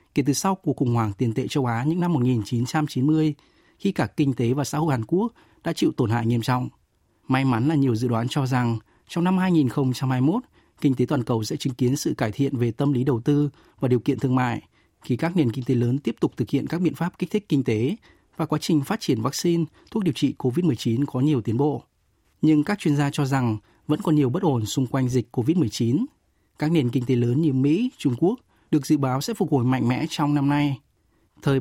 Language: Vietnamese